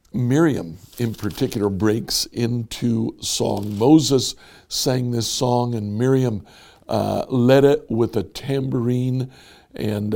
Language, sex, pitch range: English, male, 105-135 Hz